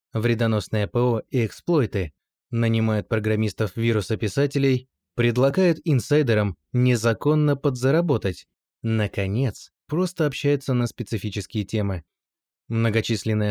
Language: Russian